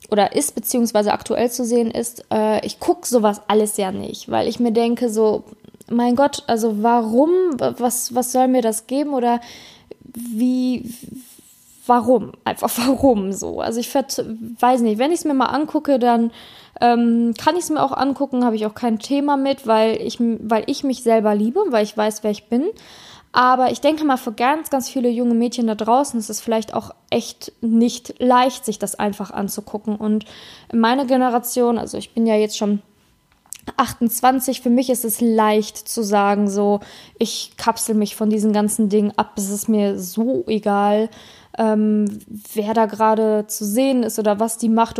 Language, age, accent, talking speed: German, 20-39, German, 185 wpm